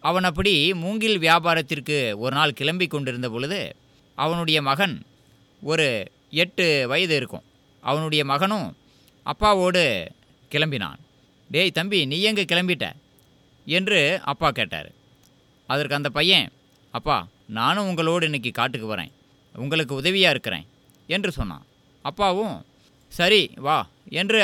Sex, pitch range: male, 135-180 Hz